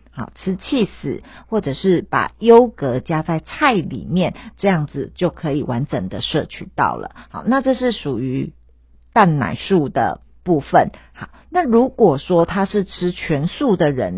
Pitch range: 150-195 Hz